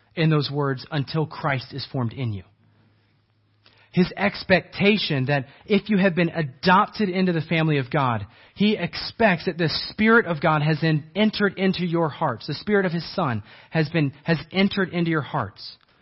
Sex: male